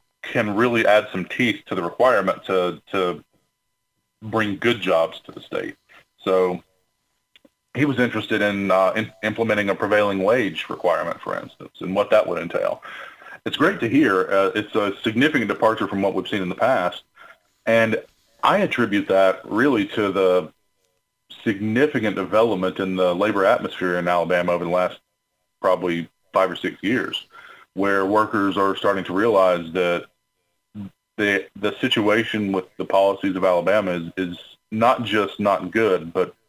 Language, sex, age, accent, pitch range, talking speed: English, male, 40-59, American, 90-100 Hz, 160 wpm